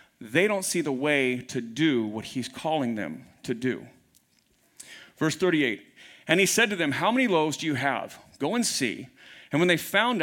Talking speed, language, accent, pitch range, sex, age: 195 wpm, English, American, 150-235 Hz, male, 40-59